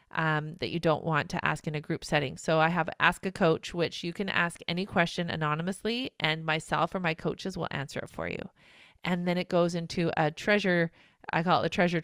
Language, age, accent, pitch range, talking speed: English, 30-49, American, 155-185 Hz, 230 wpm